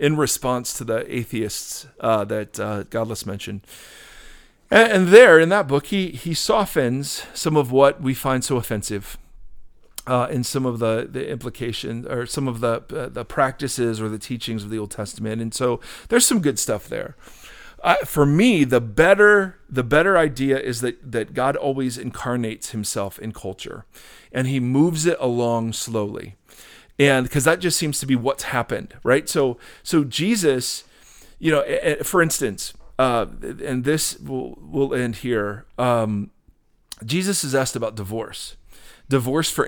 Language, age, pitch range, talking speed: English, 40-59, 115-140 Hz, 165 wpm